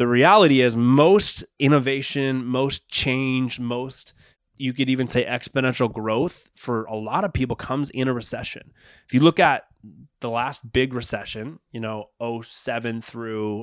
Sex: male